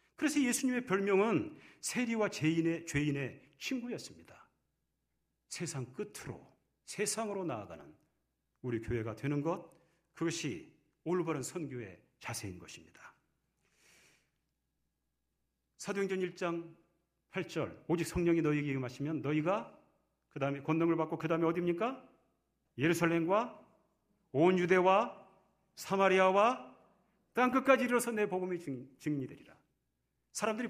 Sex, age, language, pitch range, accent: male, 40-59, Korean, 145-230 Hz, native